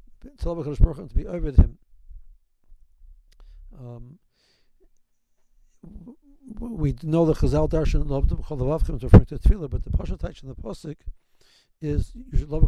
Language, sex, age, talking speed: English, male, 60-79, 125 wpm